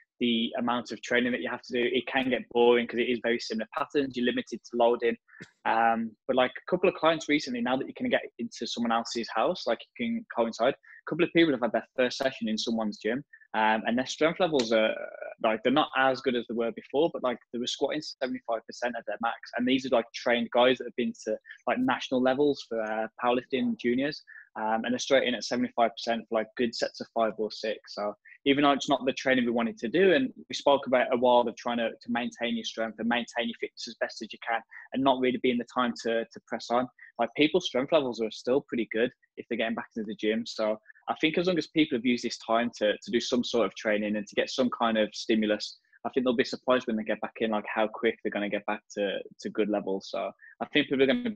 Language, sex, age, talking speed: English, male, 10-29, 265 wpm